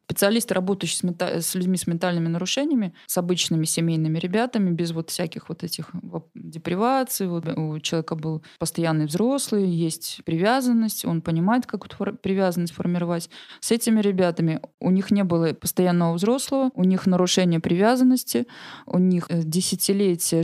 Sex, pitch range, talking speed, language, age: female, 165-195 Hz, 145 wpm, Russian, 20-39